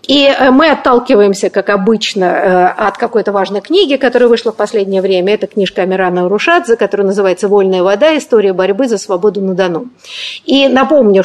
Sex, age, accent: female, 50-69, native